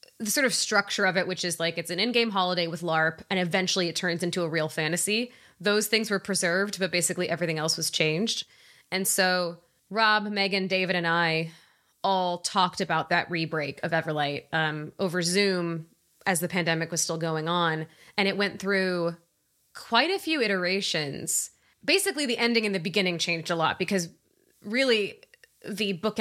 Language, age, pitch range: English, 20-39, 170-200 Hz